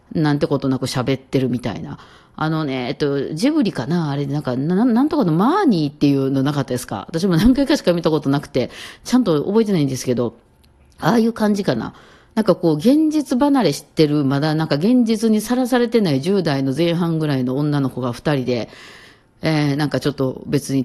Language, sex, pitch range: Japanese, female, 130-175 Hz